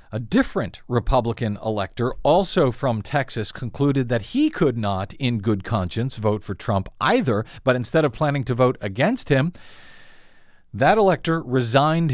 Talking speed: 150 wpm